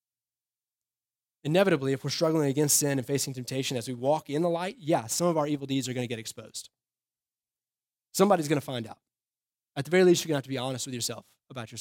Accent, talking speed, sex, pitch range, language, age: American, 220 wpm, male, 125-160 Hz, English, 20-39